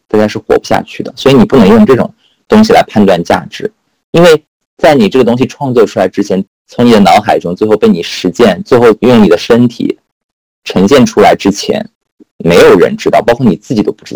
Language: Chinese